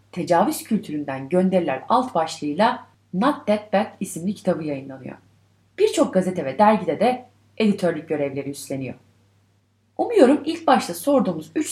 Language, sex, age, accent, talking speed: Turkish, female, 30-49, native, 125 wpm